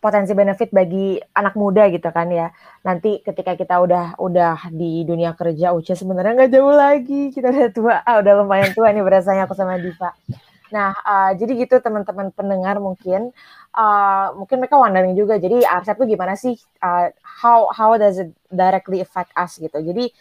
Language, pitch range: Indonesian, 175-210 Hz